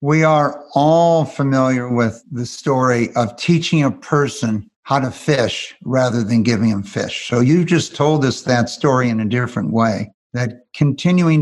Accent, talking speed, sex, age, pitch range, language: American, 170 wpm, male, 60-79, 120-145 Hz, English